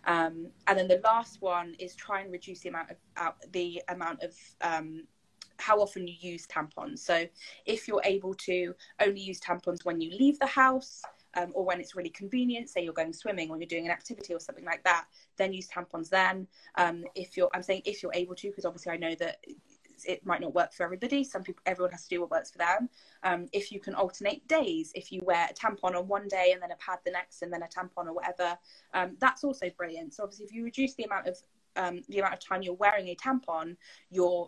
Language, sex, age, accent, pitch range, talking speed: English, female, 20-39, British, 170-205 Hz, 240 wpm